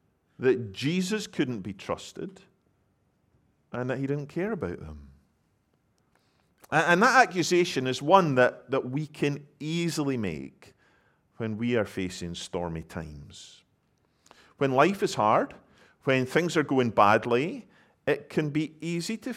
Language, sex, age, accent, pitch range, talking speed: English, male, 50-69, British, 105-170 Hz, 135 wpm